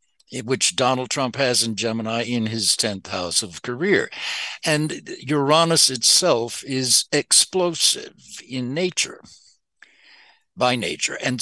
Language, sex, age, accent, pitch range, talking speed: English, male, 60-79, American, 115-165 Hz, 115 wpm